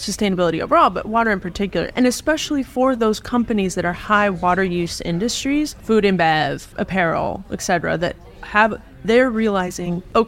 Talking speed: 160 wpm